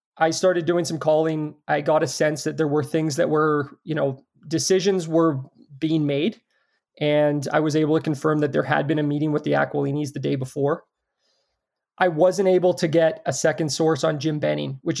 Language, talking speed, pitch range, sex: English, 205 wpm, 140-160 Hz, male